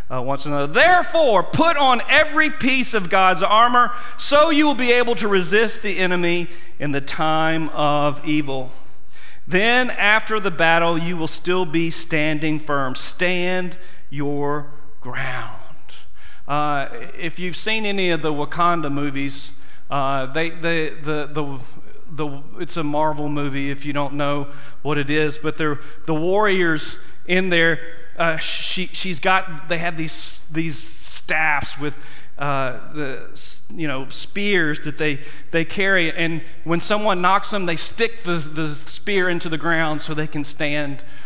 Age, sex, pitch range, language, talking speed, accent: 40-59, male, 150-185 Hz, English, 145 wpm, American